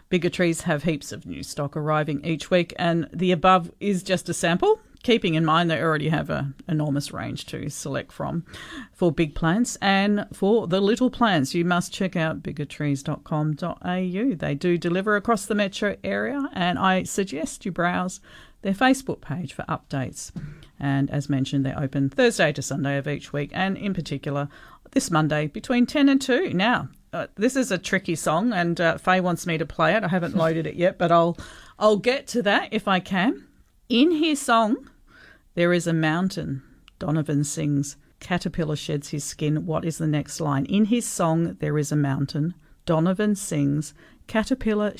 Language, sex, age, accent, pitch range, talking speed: English, female, 50-69, Australian, 155-205 Hz, 180 wpm